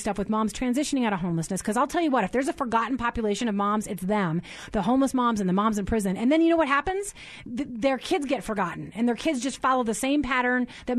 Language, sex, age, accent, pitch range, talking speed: English, female, 30-49, American, 205-275 Hz, 270 wpm